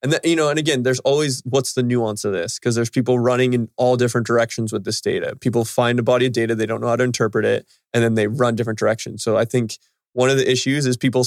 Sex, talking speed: male, 270 wpm